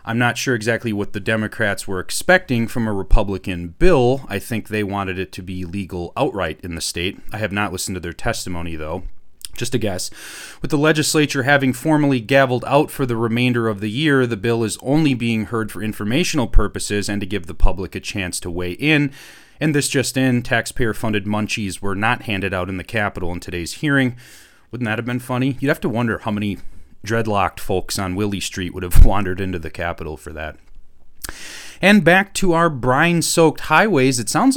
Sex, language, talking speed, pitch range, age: male, English, 200 wpm, 100-135 Hz, 30-49